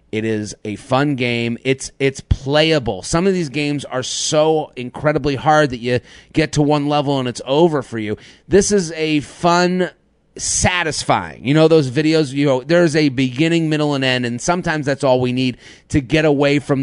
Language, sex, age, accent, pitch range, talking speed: English, male, 30-49, American, 120-150 Hz, 195 wpm